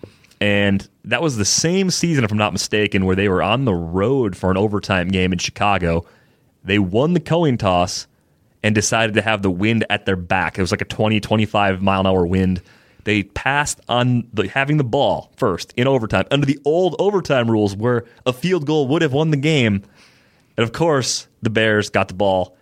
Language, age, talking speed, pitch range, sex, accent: English, 30-49, 205 wpm, 95-125 Hz, male, American